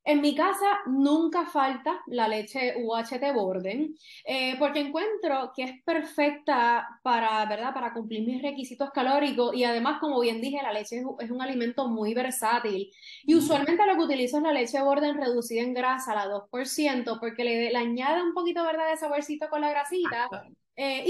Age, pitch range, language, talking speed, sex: 20-39, 230-300 Hz, Spanish, 180 wpm, female